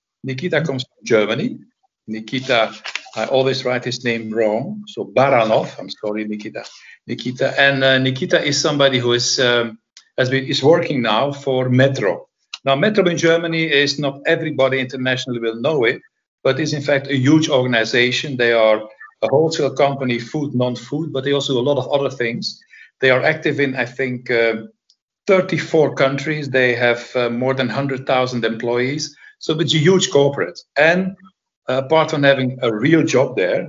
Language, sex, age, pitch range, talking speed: English, male, 60-79, 120-155 Hz, 170 wpm